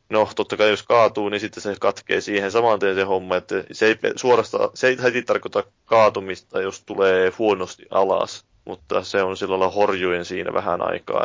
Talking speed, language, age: 180 wpm, Finnish, 20-39